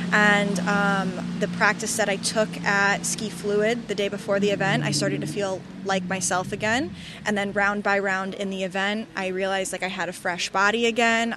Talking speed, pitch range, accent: 205 wpm, 190-215 Hz, American